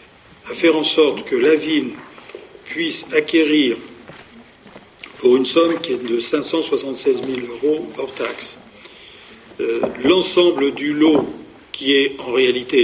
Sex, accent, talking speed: male, French, 130 wpm